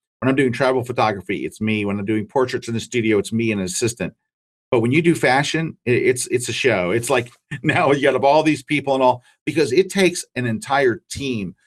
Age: 50-69